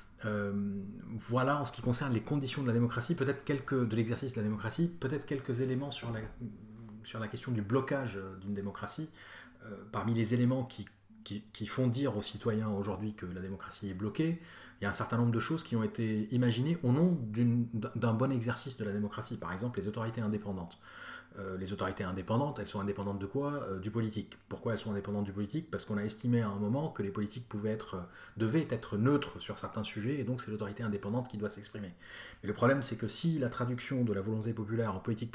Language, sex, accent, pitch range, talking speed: French, male, French, 100-125 Hz, 220 wpm